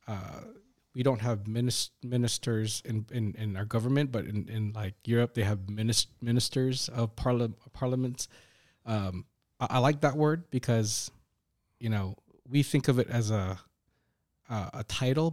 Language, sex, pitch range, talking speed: English, male, 105-125 Hz, 160 wpm